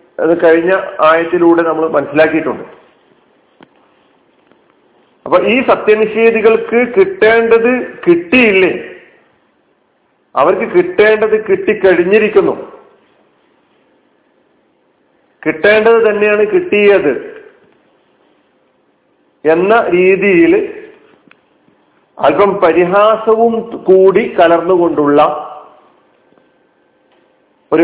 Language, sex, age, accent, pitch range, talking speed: Malayalam, male, 40-59, native, 160-230 Hz, 50 wpm